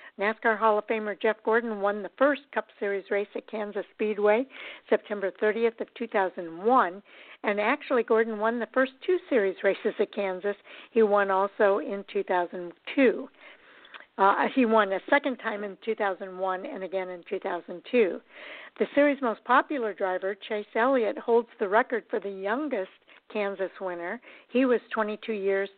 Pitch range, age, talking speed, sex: 195-240 Hz, 60-79, 155 wpm, female